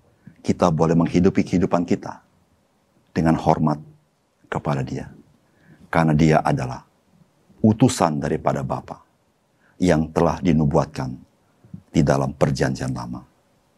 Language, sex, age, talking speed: Indonesian, male, 50-69, 95 wpm